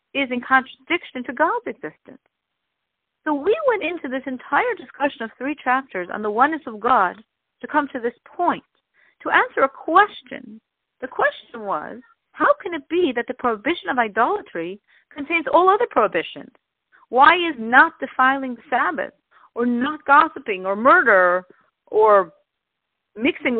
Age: 50-69